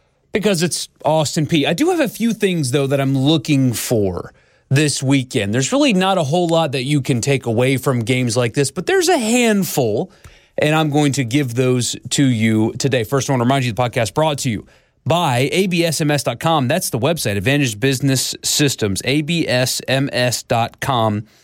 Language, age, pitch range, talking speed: English, 30-49, 120-155 Hz, 180 wpm